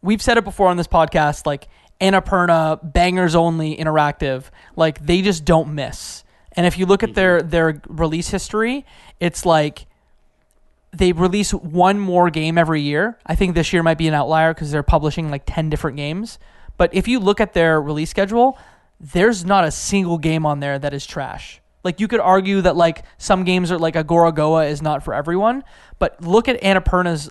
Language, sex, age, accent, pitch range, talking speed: English, male, 20-39, American, 160-200 Hz, 195 wpm